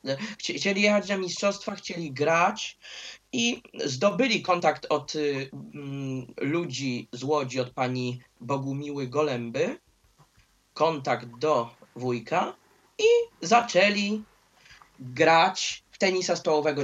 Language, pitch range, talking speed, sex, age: Polish, 135-185 Hz, 95 wpm, male, 20-39